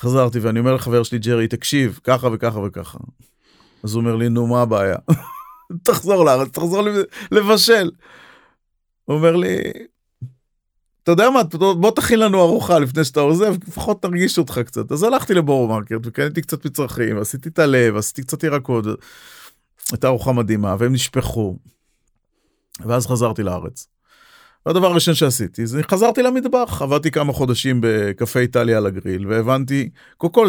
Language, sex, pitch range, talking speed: Hebrew, male, 120-165 Hz, 145 wpm